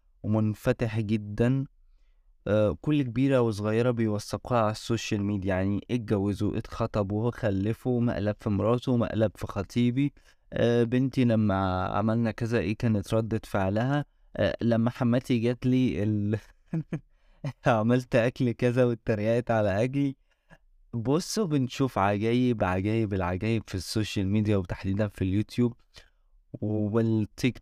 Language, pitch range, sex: Arabic, 95-120 Hz, male